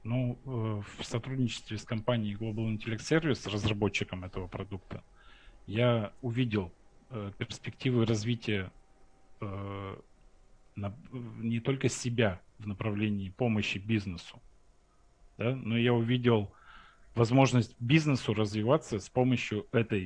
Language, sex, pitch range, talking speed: Russian, male, 105-120 Hz, 100 wpm